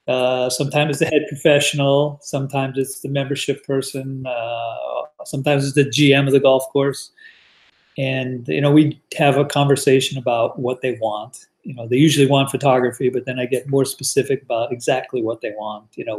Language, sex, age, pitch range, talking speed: English, male, 40-59, 125-145 Hz, 185 wpm